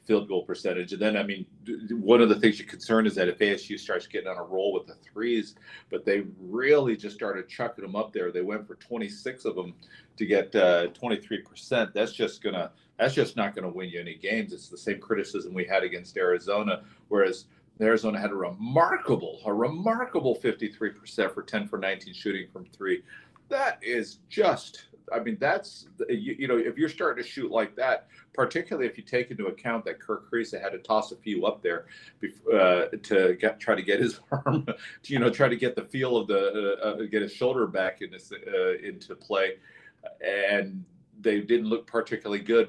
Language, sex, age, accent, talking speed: English, male, 40-59, American, 195 wpm